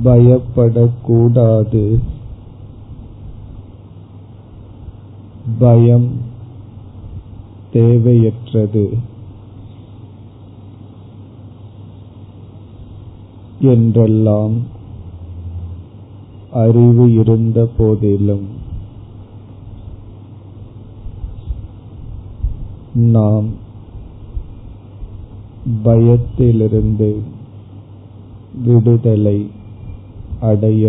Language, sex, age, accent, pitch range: Tamil, male, 40-59, native, 100-110 Hz